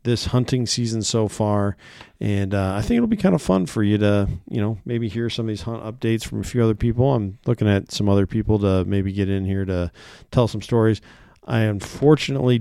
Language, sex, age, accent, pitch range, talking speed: English, male, 40-59, American, 95-115 Hz, 230 wpm